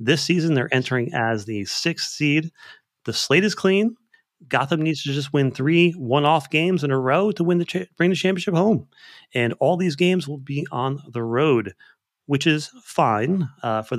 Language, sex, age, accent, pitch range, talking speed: English, male, 30-49, American, 120-175 Hz, 185 wpm